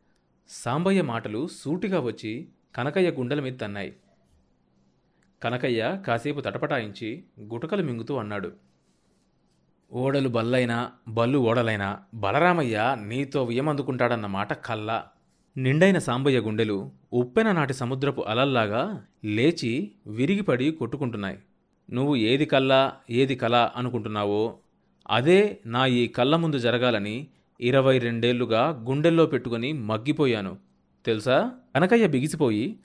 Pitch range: 105-140 Hz